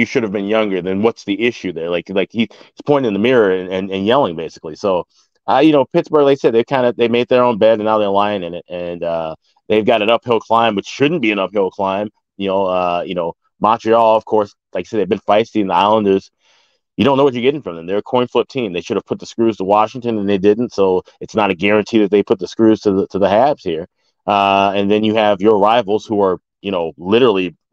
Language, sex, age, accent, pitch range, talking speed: English, male, 30-49, American, 95-115 Hz, 275 wpm